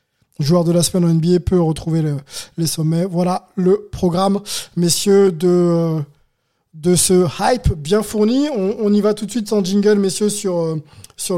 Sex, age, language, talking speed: male, 20-39, French, 180 wpm